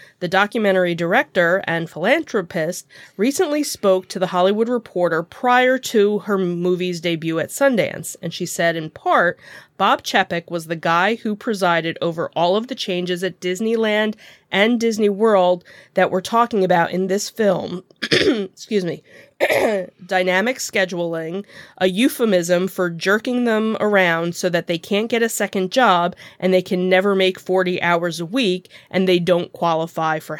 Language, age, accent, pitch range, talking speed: English, 30-49, American, 175-210 Hz, 155 wpm